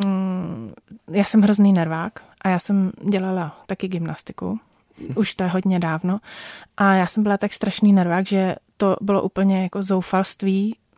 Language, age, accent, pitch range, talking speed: Czech, 20-39, native, 185-215 Hz, 155 wpm